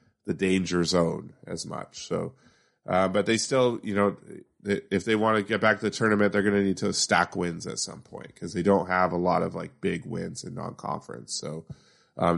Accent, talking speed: American, 220 wpm